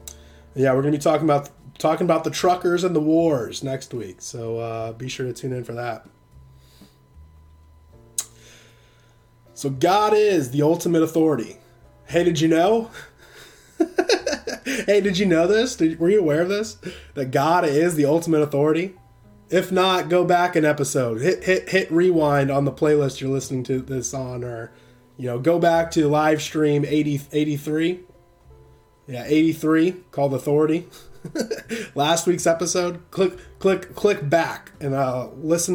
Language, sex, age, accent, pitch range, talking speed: English, male, 20-39, American, 125-170 Hz, 155 wpm